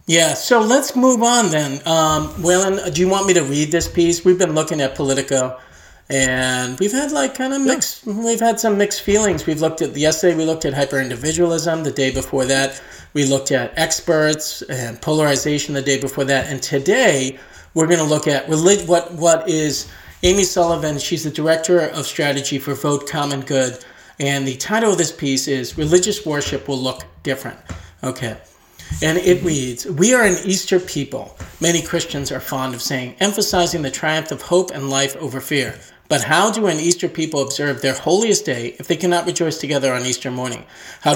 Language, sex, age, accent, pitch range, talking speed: English, male, 40-59, American, 135-170 Hz, 190 wpm